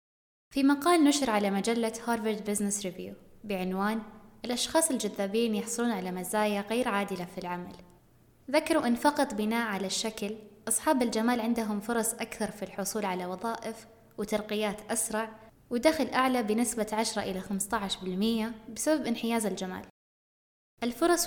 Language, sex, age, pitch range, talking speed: Arabic, female, 20-39, 200-245 Hz, 125 wpm